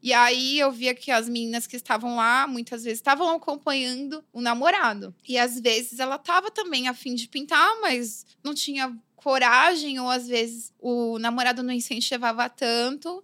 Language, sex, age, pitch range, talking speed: Portuguese, female, 20-39, 240-310 Hz, 165 wpm